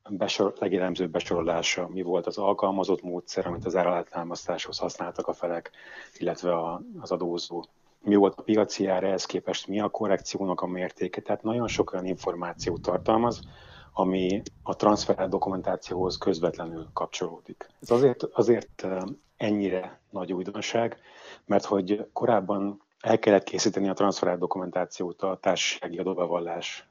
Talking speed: 135 wpm